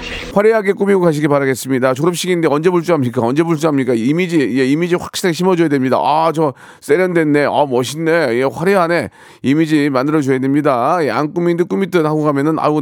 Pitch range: 140-180 Hz